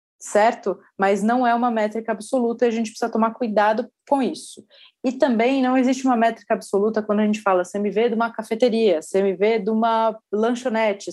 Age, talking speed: 20-39, 185 wpm